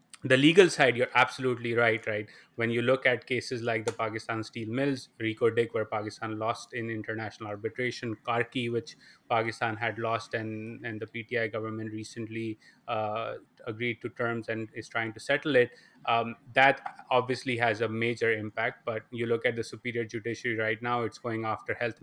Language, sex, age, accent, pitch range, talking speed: English, male, 20-39, Indian, 110-120 Hz, 180 wpm